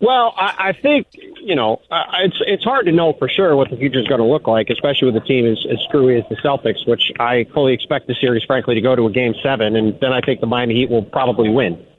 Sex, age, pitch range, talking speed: male, 40-59, 120-145 Hz, 275 wpm